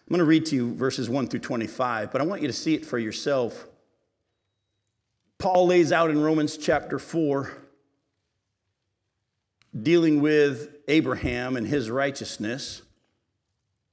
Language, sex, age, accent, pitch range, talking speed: English, male, 50-69, American, 130-195 Hz, 140 wpm